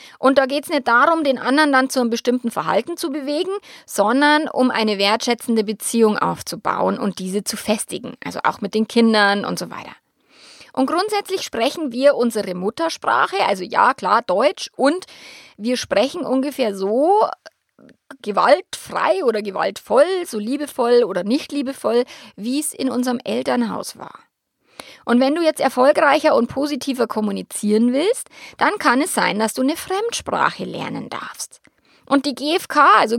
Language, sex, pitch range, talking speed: German, female, 230-305 Hz, 155 wpm